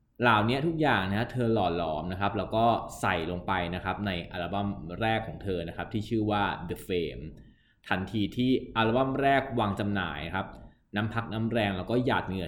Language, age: Thai, 20-39